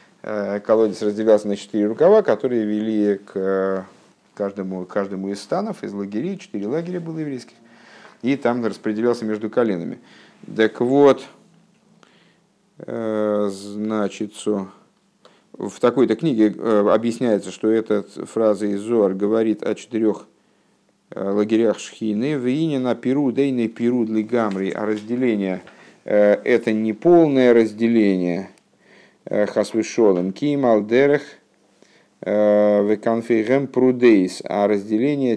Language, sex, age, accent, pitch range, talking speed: Russian, male, 50-69, native, 100-120 Hz, 90 wpm